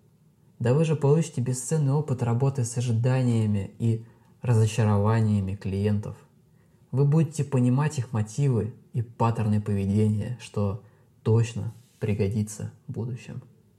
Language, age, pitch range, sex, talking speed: Russian, 20-39, 105-130 Hz, male, 110 wpm